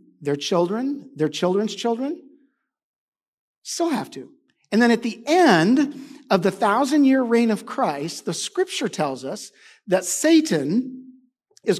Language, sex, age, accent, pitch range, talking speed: English, male, 50-69, American, 190-285 Hz, 130 wpm